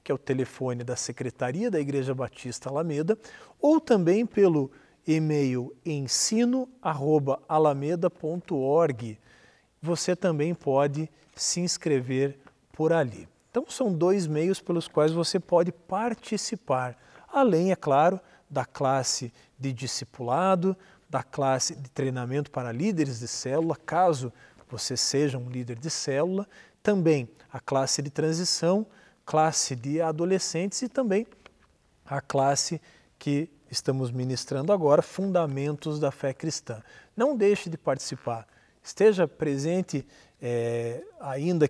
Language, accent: Portuguese, Brazilian